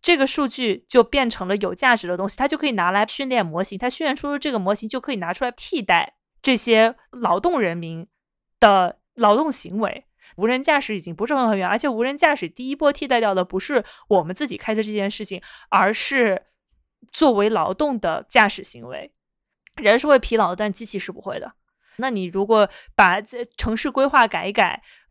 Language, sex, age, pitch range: Chinese, female, 20-39, 200-270 Hz